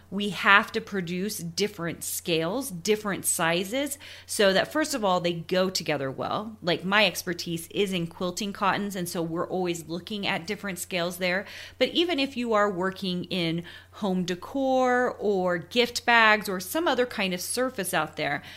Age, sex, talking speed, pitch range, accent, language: 30-49, female, 170 wpm, 175-235 Hz, American, English